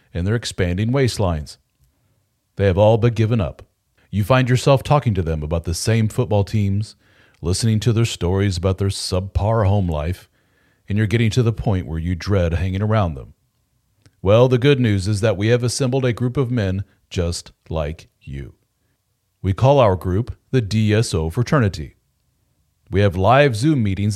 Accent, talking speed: American, 175 wpm